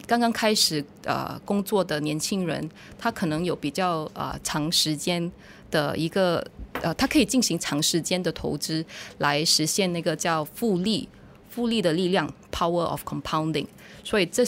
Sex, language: female, Chinese